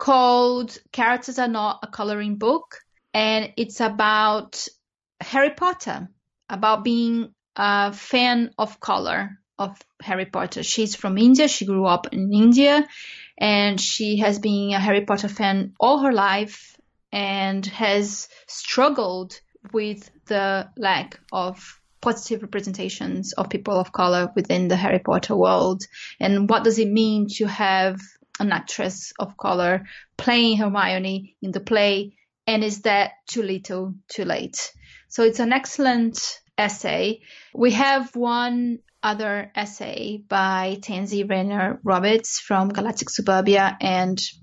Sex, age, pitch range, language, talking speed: female, 20-39, 195-230 Hz, English, 135 wpm